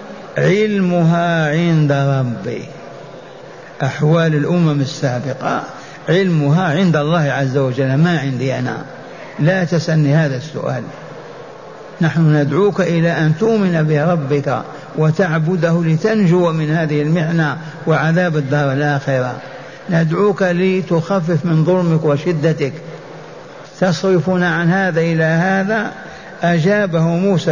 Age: 50-69